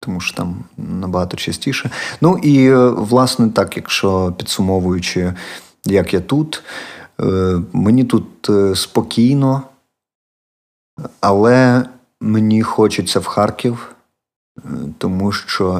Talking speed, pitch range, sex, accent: 90 wpm, 95-115 Hz, male, native